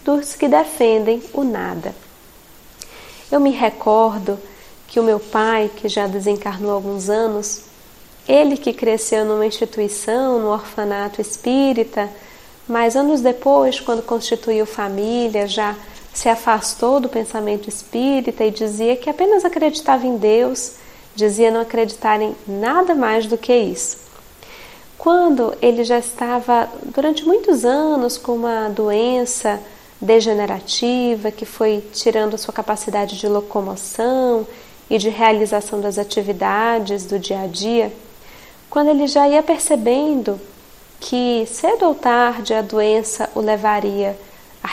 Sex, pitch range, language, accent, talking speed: female, 210-245 Hz, Portuguese, Brazilian, 130 wpm